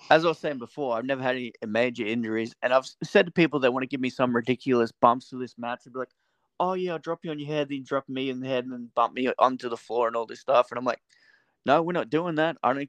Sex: male